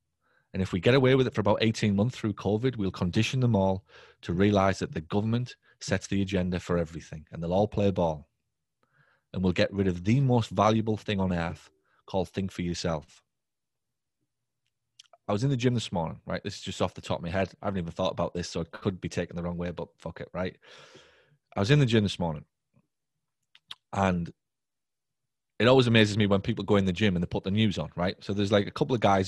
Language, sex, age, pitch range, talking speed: English, male, 30-49, 90-105 Hz, 235 wpm